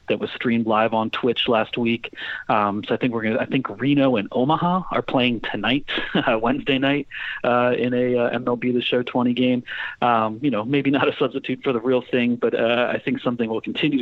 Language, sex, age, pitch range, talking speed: English, male, 30-49, 105-125 Hz, 220 wpm